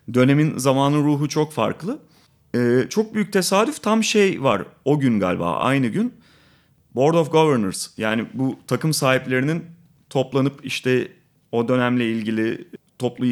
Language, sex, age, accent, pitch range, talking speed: Turkish, male, 30-49, native, 110-150 Hz, 135 wpm